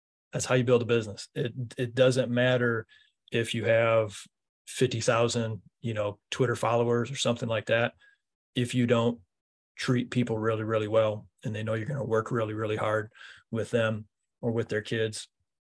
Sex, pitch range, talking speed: male, 110-130 Hz, 175 wpm